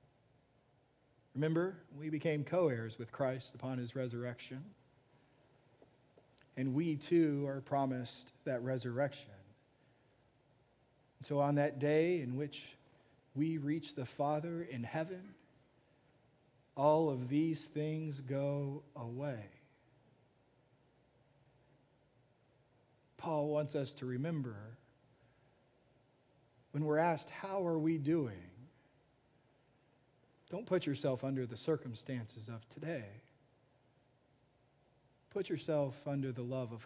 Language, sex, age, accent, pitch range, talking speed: English, male, 40-59, American, 125-150 Hz, 100 wpm